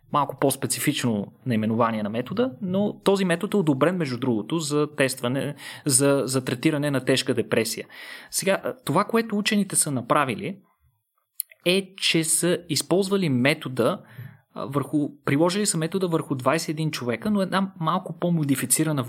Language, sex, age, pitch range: Bulgarian, male, 30-49, 130-185 Hz